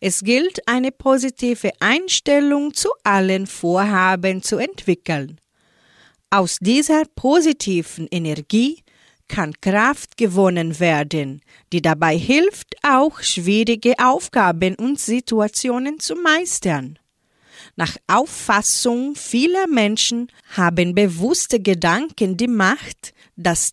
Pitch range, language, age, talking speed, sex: 185-265 Hz, German, 40-59, 95 wpm, female